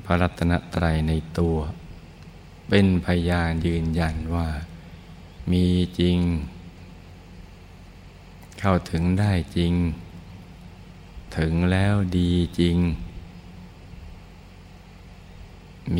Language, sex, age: Thai, male, 60-79